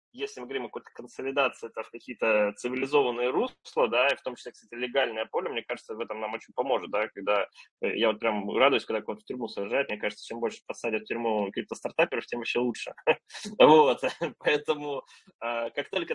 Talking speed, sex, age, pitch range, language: 190 wpm, male, 20-39, 115-150 Hz, Russian